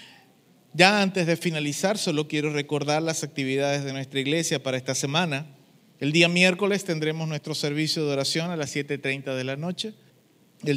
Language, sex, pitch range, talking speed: Spanish, male, 135-165 Hz, 165 wpm